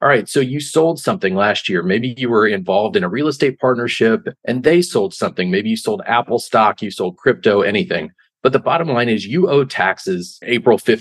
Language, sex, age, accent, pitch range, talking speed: English, male, 40-59, American, 115-160 Hz, 215 wpm